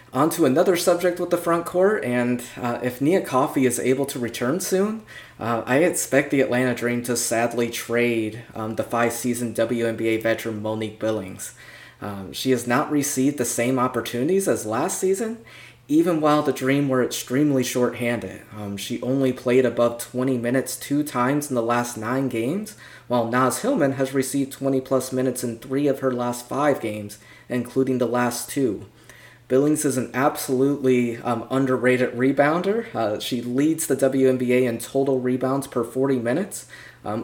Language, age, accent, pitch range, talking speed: English, 20-39, American, 115-135 Hz, 170 wpm